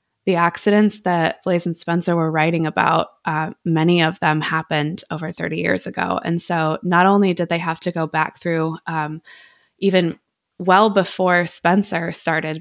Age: 20-39